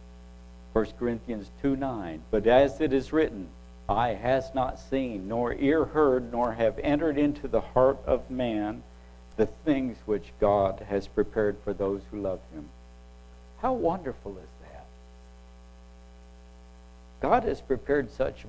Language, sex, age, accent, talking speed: English, male, 60-79, American, 140 wpm